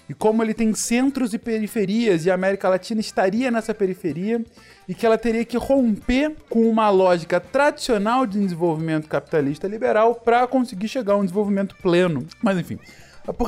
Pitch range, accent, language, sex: 170-240 Hz, Brazilian, Portuguese, male